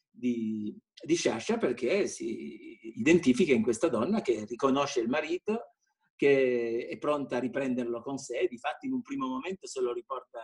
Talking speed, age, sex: 160 wpm, 50-69, male